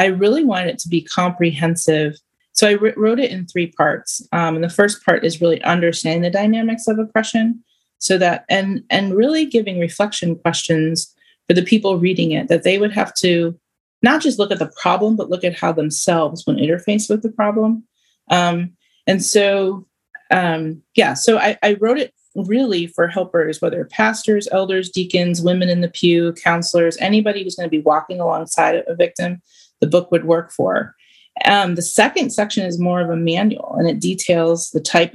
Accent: American